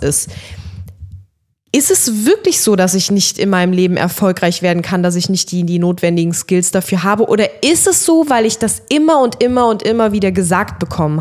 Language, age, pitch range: German, 20-39, 180-235 Hz